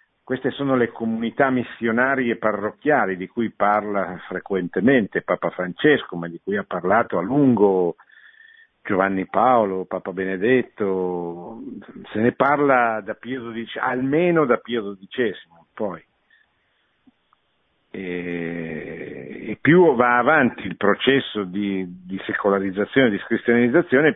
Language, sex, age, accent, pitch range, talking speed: Italian, male, 50-69, native, 95-130 Hz, 115 wpm